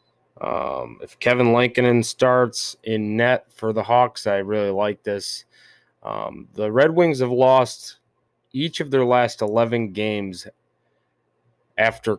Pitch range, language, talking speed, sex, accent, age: 100-125 Hz, English, 135 wpm, male, American, 20-39